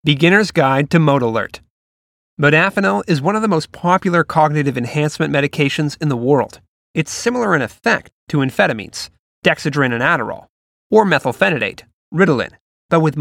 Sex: male